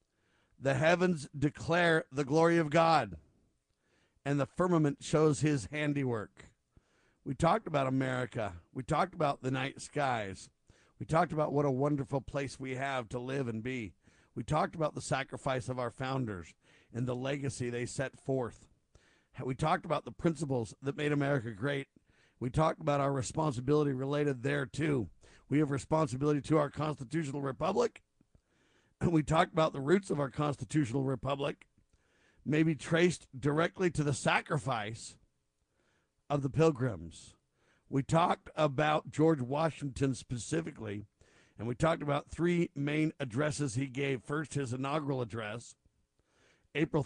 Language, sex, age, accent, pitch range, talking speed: English, male, 50-69, American, 130-155 Hz, 145 wpm